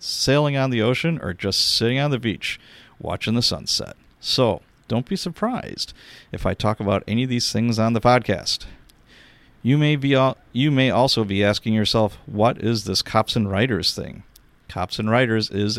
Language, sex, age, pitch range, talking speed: English, male, 40-59, 100-135 Hz, 185 wpm